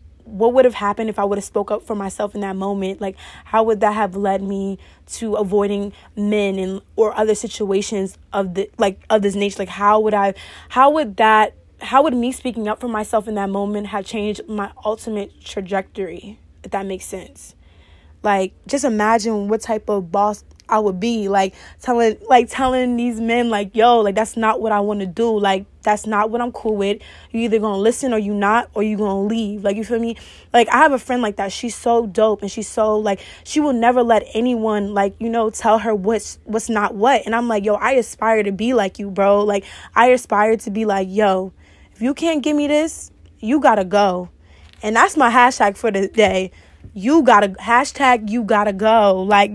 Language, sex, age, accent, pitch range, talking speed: English, female, 20-39, American, 200-240 Hz, 215 wpm